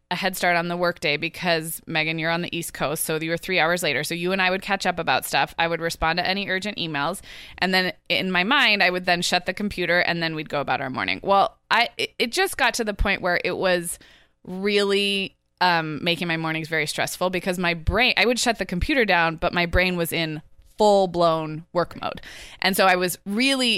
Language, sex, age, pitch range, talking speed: English, female, 20-39, 165-200 Hz, 235 wpm